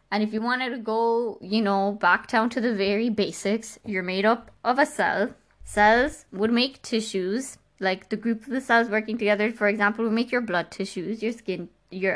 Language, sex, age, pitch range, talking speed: English, female, 20-39, 195-230 Hz, 205 wpm